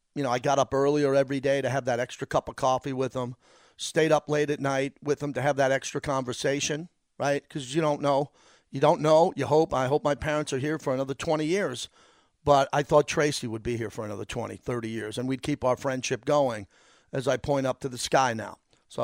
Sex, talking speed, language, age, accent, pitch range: male, 240 wpm, English, 40-59, American, 130-160 Hz